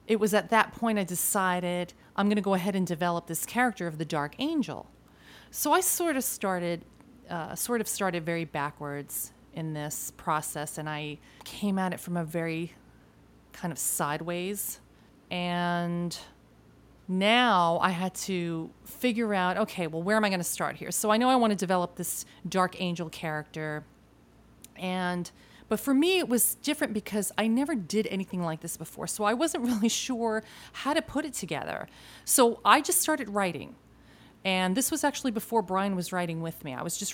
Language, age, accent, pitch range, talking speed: English, 30-49, American, 165-215 Hz, 185 wpm